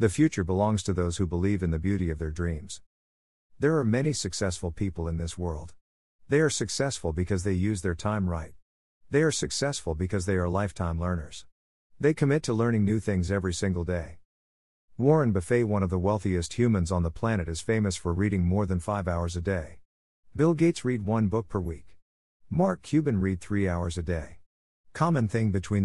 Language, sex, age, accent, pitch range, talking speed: English, male, 50-69, American, 85-115 Hz, 195 wpm